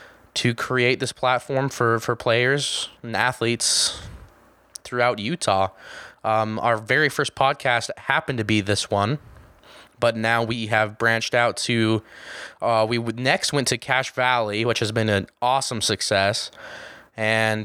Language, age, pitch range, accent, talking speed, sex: English, 20-39, 110-125 Hz, American, 145 wpm, male